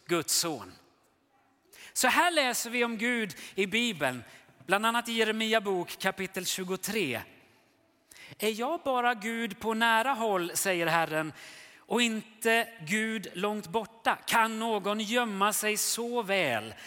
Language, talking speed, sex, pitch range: Swedish, 130 wpm, male, 175-235 Hz